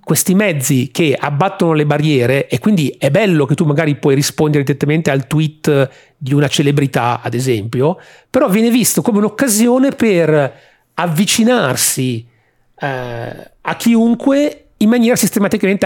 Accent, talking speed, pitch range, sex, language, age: native, 135 wpm, 135-170 Hz, male, Italian, 40-59